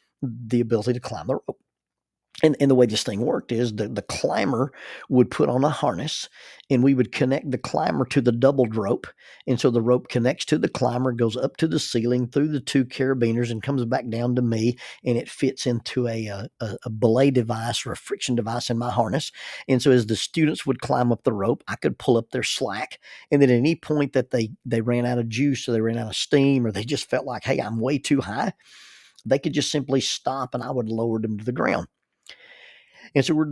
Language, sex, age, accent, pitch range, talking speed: English, male, 50-69, American, 120-140 Hz, 235 wpm